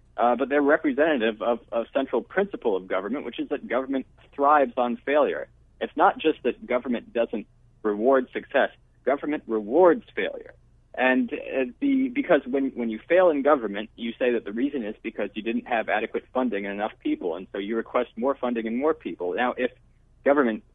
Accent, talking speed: American, 190 wpm